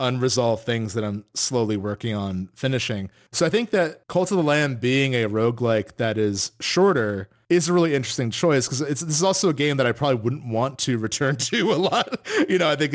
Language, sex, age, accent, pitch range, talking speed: English, male, 30-49, American, 110-145 Hz, 220 wpm